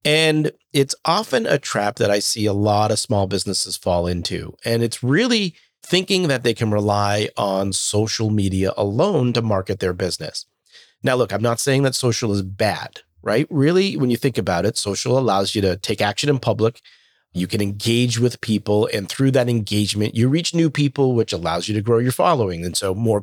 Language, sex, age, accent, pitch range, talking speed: English, male, 40-59, American, 105-140 Hz, 200 wpm